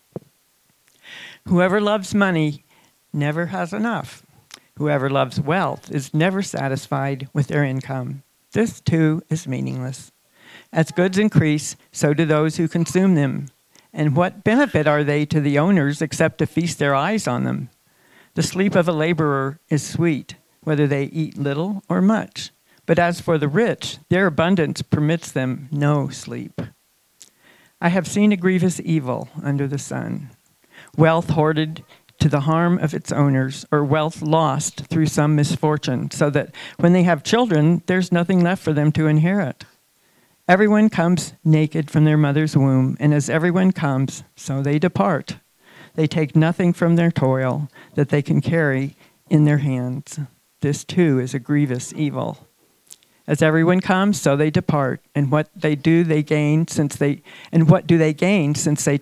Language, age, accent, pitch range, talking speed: English, 60-79, American, 145-175 Hz, 160 wpm